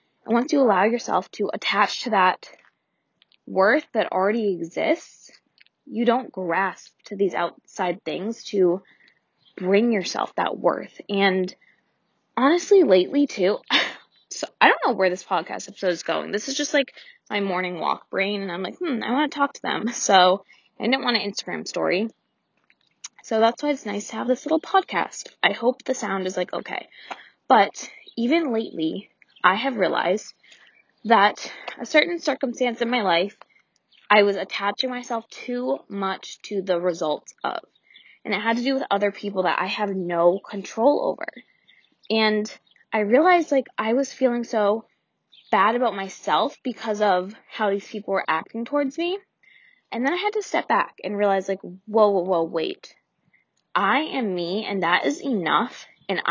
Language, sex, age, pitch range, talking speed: English, female, 20-39, 190-255 Hz, 170 wpm